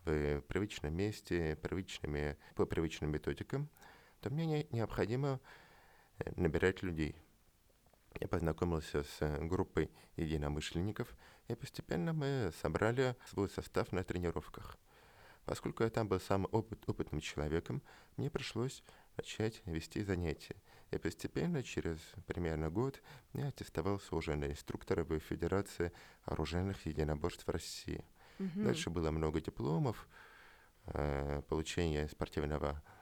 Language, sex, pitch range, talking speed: Russian, male, 80-110 Hz, 105 wpm